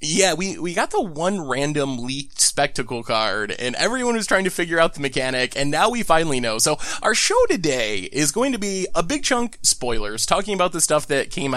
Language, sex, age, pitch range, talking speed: English, male, 20-39, 140-210 Hz, 220 wpm